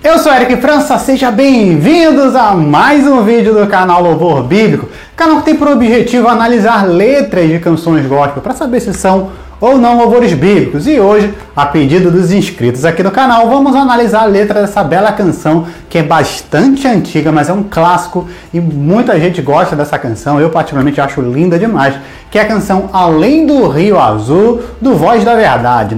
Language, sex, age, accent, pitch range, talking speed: Portuguese, male, 30-49, Brazilian, 140-220 Hz, 185 wpm